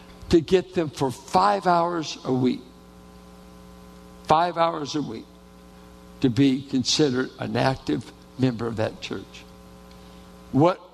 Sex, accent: male, American